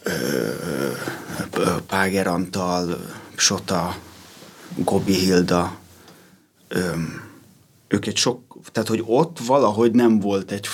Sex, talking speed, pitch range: male, 85 wpm, 95-110 Hz